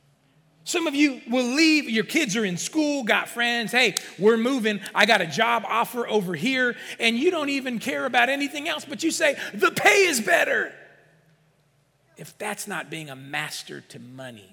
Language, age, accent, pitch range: English, 40-59, American, 170-265 Hz